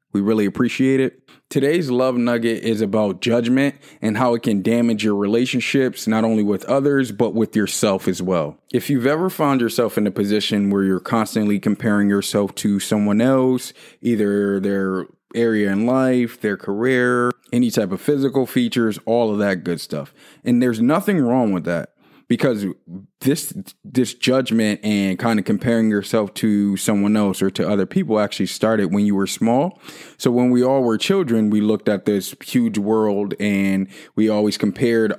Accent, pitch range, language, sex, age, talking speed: American, 100-120 Hz, English, male, 20-39, 175 wpm